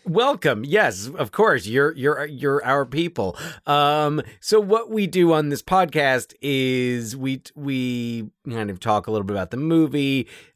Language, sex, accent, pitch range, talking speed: English, male, American, 100-140 Hz, 170 wpm